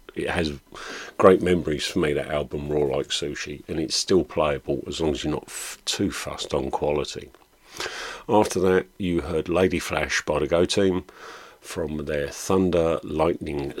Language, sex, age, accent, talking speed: English, male, 50-69, British, 170 wpm